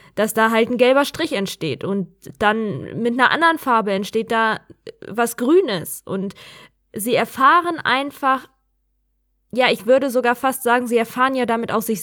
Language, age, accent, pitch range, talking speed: German, 20-39, German, 200-250 Hz, 165 wpm